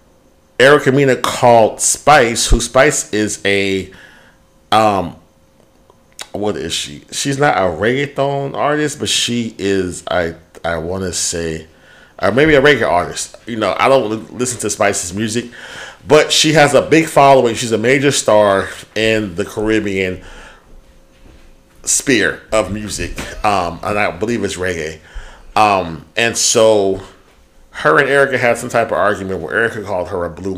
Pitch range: 100-140 Hz